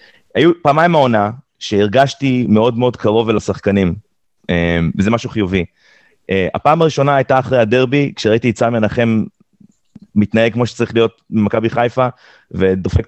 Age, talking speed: 30-49, 130 wpm